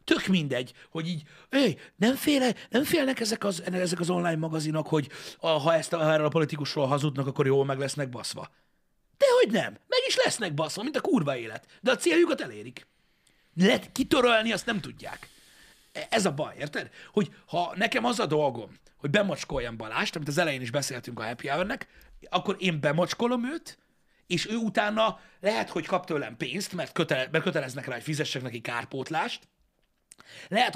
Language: Hungarian